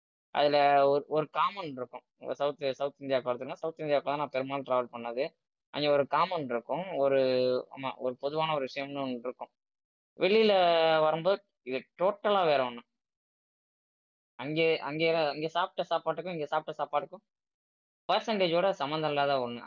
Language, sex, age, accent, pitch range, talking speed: Tamil, female, 20-39, native, 130-160 Hz, 145 wpm